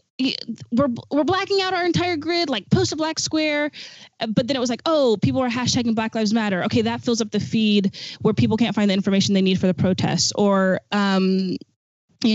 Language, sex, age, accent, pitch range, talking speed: English, female, 20-39, American, 190-220 Hz, 215 wpm